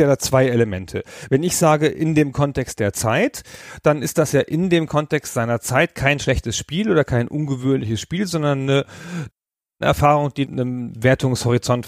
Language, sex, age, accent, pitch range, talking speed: German, male, 40-59, German, 110-140 Hz, 165 wpm